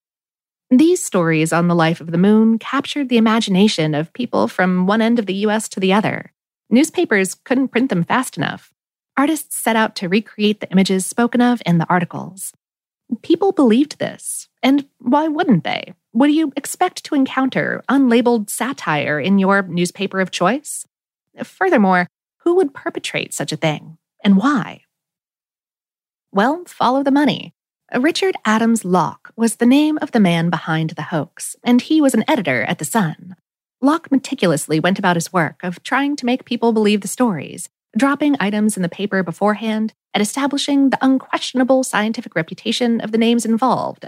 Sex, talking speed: female, 165 wpm